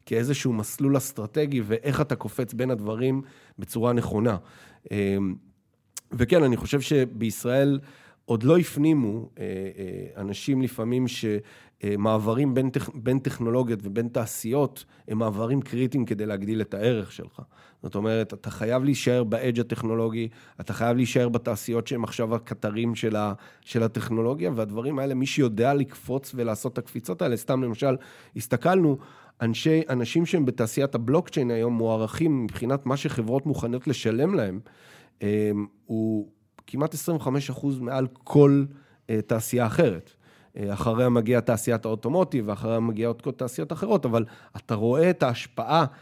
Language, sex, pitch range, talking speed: Hebrew, male, 110-135 Hz, 125 wpm